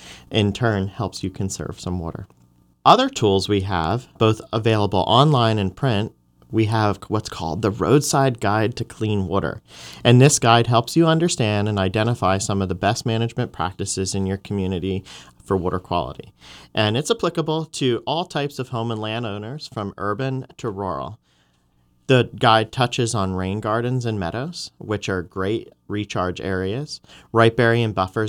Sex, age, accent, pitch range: male, 40-59, American, 95-120 Hz